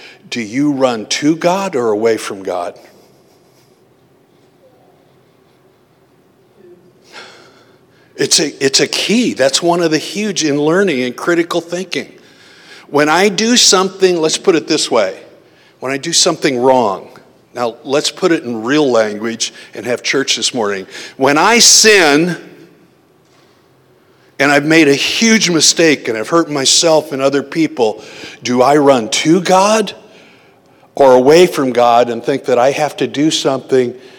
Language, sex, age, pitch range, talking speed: English, male, 60-79, 130-185 Hz, 145 wpm